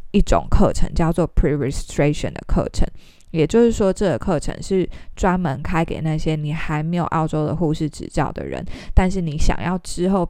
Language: Chinese